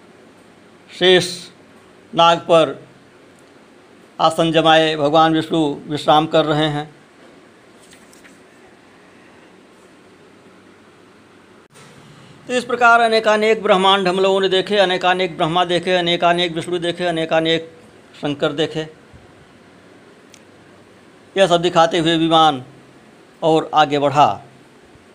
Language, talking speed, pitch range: Hindi, 90 wpm, 140-180 Hz